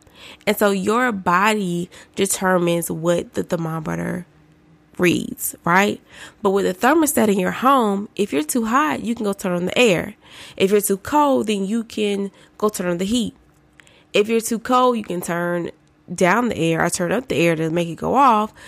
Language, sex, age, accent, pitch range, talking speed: English, female, 20-39, American, 175-215 Hz, 195 wpm